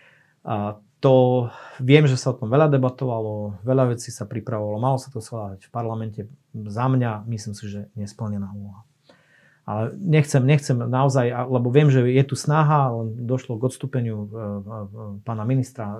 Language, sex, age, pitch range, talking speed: Slovak, male, 30-49, 110-130 Hz, 170 wpm